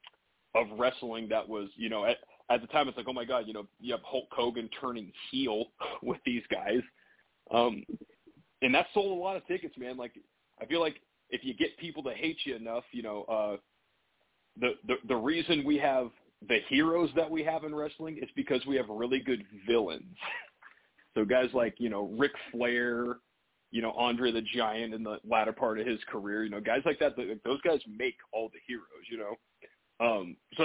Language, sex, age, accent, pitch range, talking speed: English, male, 30-49, American, 115-160 Hz, 205 wpm